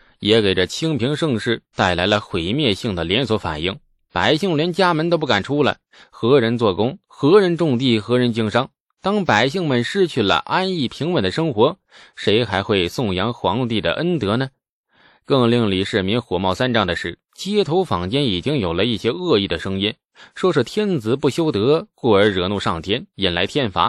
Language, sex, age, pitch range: Chinese, male, 20-39, 100-150 Hz